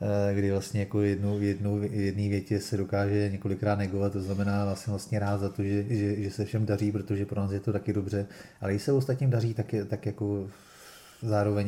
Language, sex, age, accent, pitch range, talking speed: Czech, male, 30-49, native, 100-105 Hz, 200 wpm